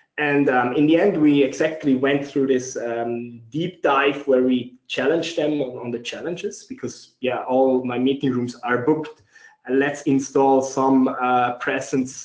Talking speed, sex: 165 wpm, male